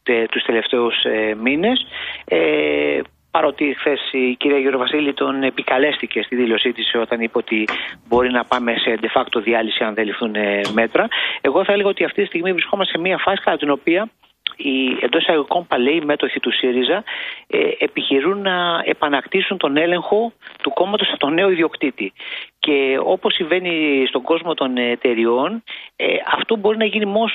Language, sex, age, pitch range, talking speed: Greek, male, 40-59, 130-200 Hz, 150 wpm